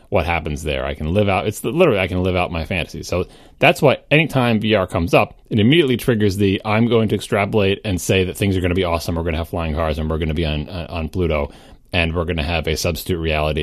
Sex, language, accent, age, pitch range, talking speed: male, English, American, 30-49, 95-130 Hz, 275 wpm